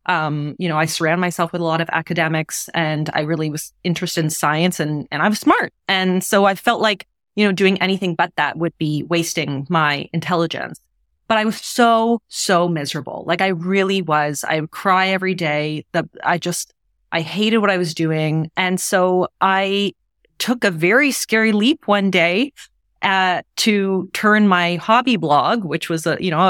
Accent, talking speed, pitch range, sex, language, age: American, 190 wpm, 165-225 Hz, female, English, 30-49